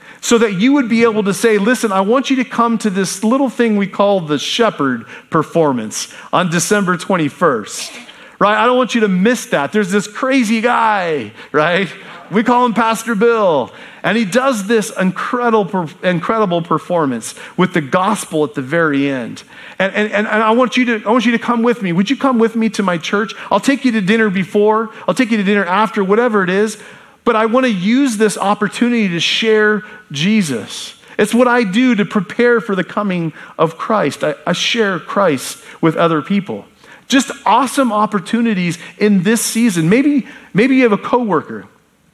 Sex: male